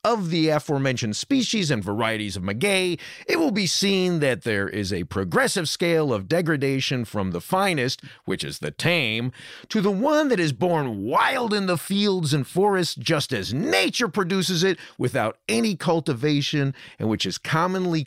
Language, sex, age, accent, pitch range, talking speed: English, male, 40-59, American, 110-175 Hz, 170 wpm